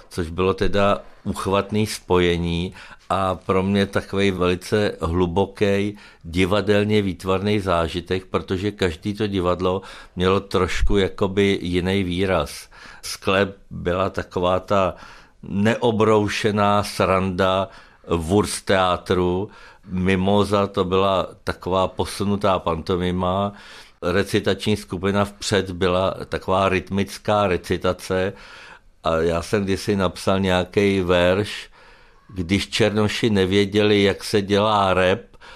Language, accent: Czech, native